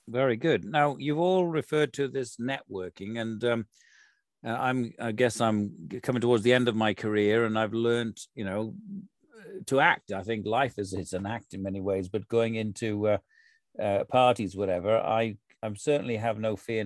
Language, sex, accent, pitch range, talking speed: English, male, British, 105-130 Hz, 190 wpm